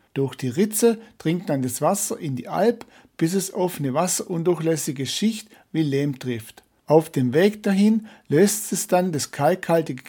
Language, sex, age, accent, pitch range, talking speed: German, male, 60-79, German, 135-195 Hz, 165 wpm